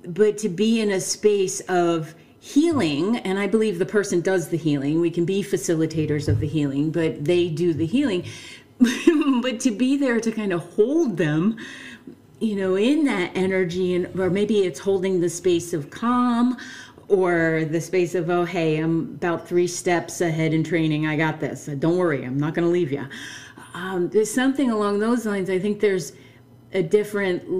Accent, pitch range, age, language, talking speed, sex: American, 165-210 Hz, 40-59, English, 185 wpm, female